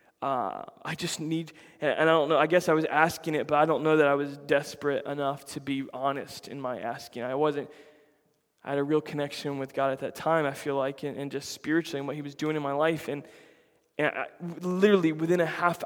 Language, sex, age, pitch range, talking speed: English, male, 20-39, 150-170 Hz, 240 wpm